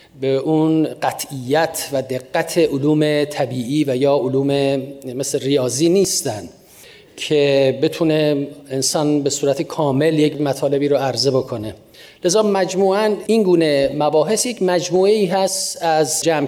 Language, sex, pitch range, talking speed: Persian, male, 140-180 Hz, 125 wpm